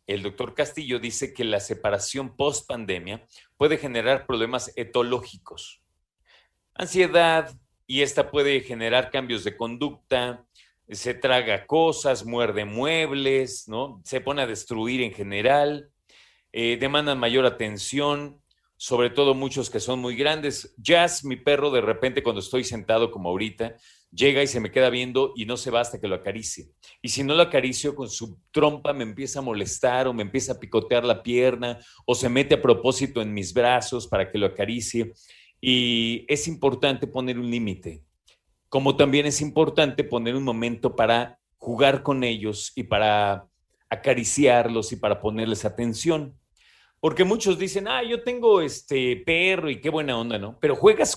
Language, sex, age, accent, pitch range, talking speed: Spanish, male, 40-59, Mexican, 115-140 Hz, 160 wpm